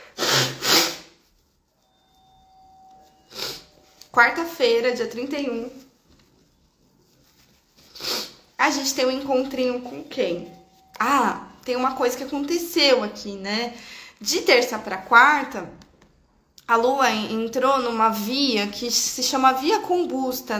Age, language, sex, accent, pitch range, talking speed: 20-39, Portuguese, female, Brazilian, 230-285 Hz, 95 wpm